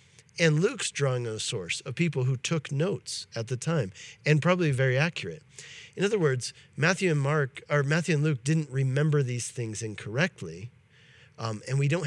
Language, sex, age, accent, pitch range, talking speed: English, male, 40-59, American, 125-155 Hz, 180 wpm